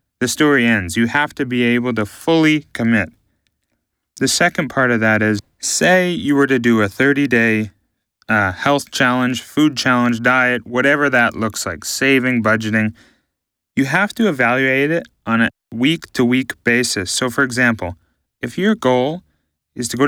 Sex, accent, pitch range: male, American, 110-145 Hz